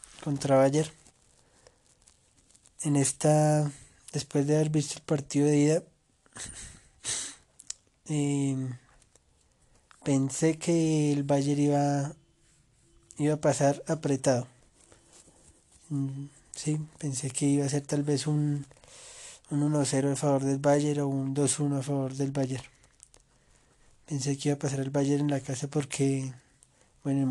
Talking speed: 125 wpm